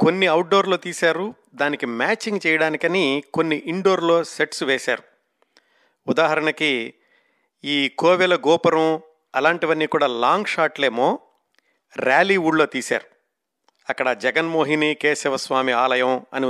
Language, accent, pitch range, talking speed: Telugu, native, 140-170 Hz, 95 wpm